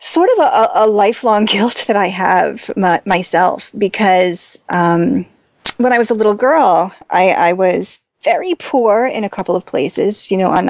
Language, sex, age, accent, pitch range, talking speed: English, female, 30-49, American, 185-265 Hz, 180 wpm